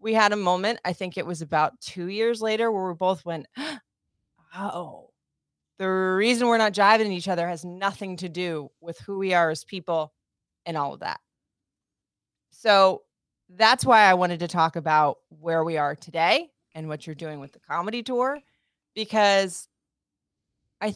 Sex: female